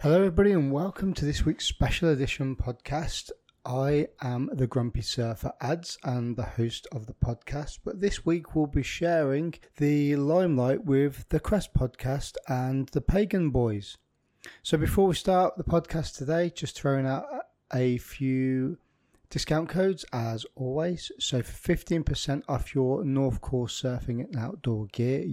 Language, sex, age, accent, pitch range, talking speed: English, male, 30-49, British, 125-155 Hz, 155 wpm